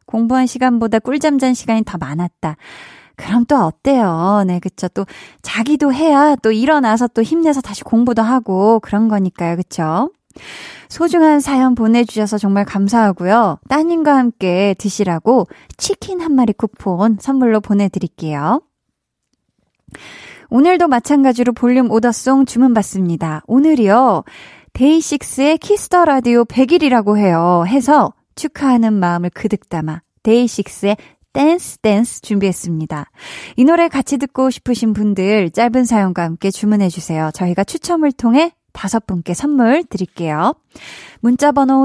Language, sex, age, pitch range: Korean, female, 20-39, 195-275 Hz